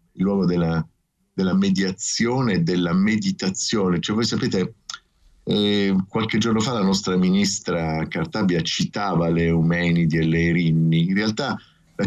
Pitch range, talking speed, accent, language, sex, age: 85-125 Hz, 140 wpm, native, Italian, male, 50-69